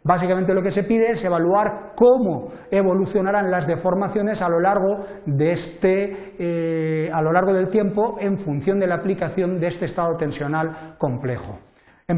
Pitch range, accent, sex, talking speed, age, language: 160-215 Hz, Spanish, male, 165 wpm, 40-59, Spanish